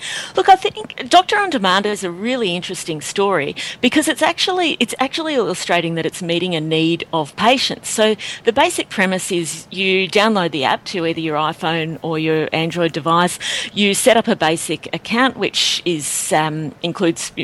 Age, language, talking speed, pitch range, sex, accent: 40-59, English, 175 wpm, 160-205 Hz, female, Australian